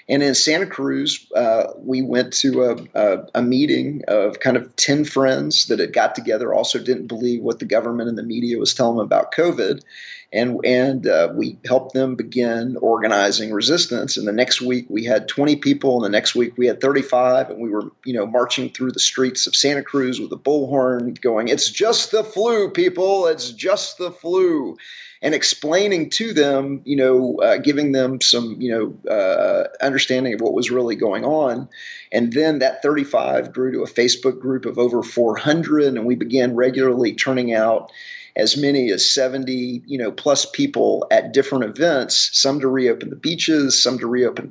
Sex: male